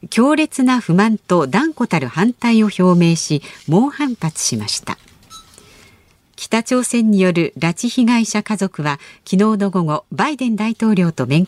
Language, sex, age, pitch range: Japanese, female, 50-69, 165-225 Hz